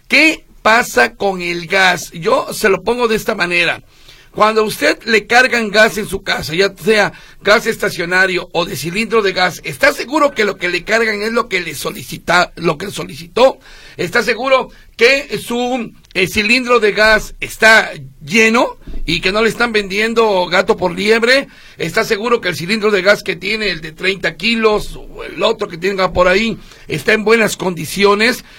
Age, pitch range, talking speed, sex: 50-69, 180-225 Hz, 185 wpm, male